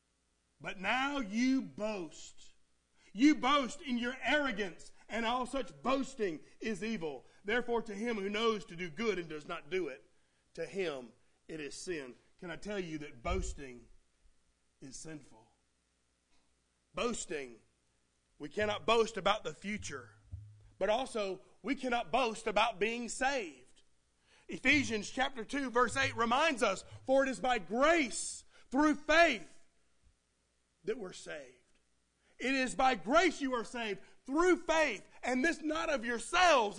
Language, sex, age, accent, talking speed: English, male, 40-59, American, 140 wpm